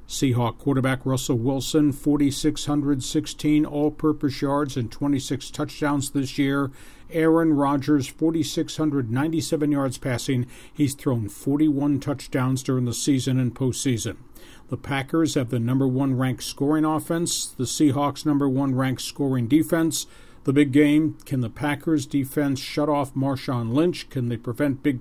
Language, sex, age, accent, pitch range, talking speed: English, male, 50-69, American, 130-150 Hz, 135 wpm